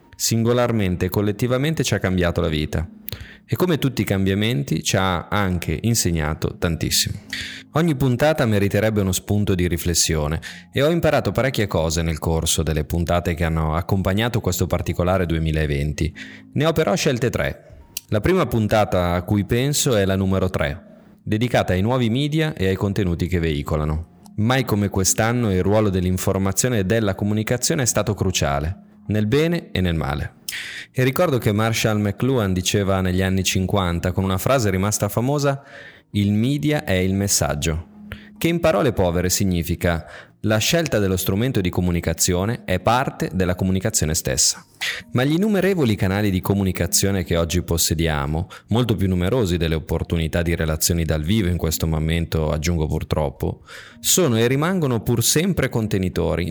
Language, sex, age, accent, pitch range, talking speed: Italian, male, 20-39, native, 85-115 Hz, 155 wpm